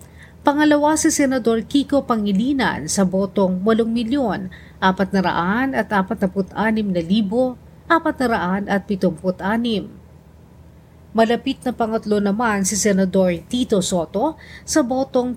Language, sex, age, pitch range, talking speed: Filipino, female, 40-59, 195-255 Hz, 90 wpm